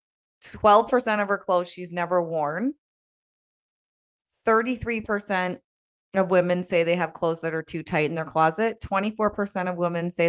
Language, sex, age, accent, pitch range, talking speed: English, female, 30-49, American, 170-215 Hz, 140 wpm